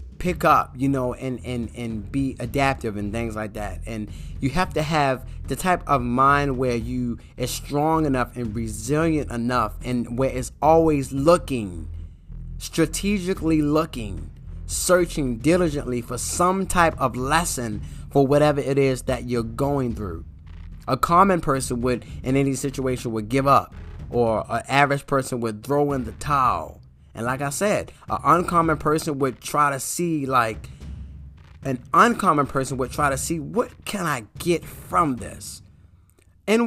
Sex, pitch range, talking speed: male, 115-160 Hz, 160 wpm